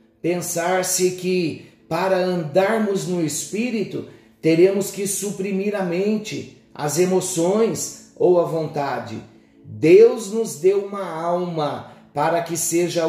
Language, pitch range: Portuguese, 150-205 Hz